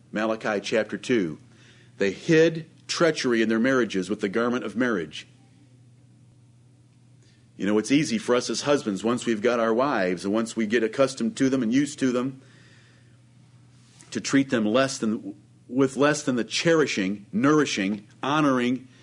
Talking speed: 160 wpm